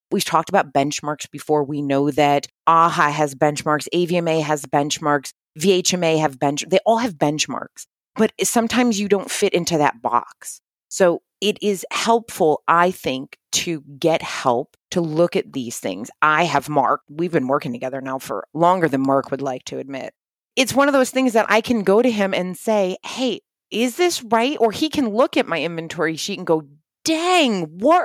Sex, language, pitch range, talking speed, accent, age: female, English, 145-215 Hz, 190 wpm, American, 30-49